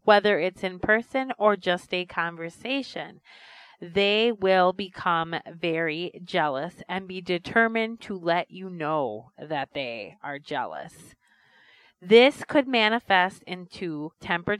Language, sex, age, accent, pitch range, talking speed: English, female, 30-49, American, 160-200 Hz, 120 wpm